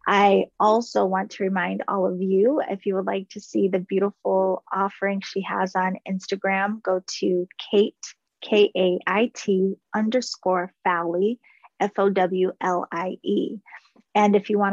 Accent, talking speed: American, 130 wpm